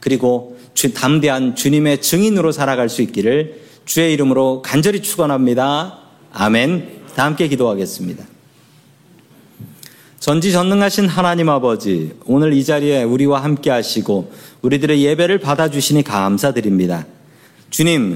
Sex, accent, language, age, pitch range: male, native, Korean, 40-59, 130-175 Hz